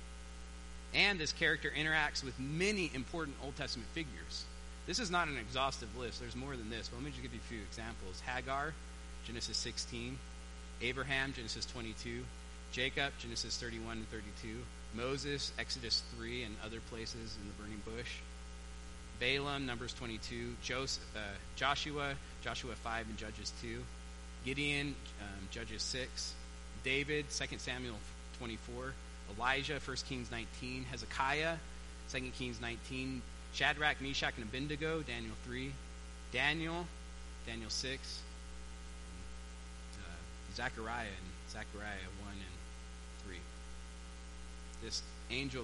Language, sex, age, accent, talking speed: English, male, 30-49, American, 125 wpm